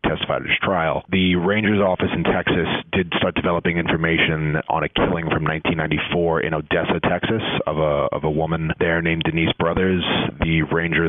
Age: 30-49